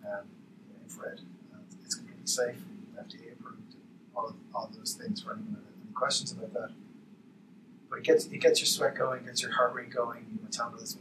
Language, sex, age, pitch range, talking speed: English, male, 30-49, 170-225 Hz, 190 wpm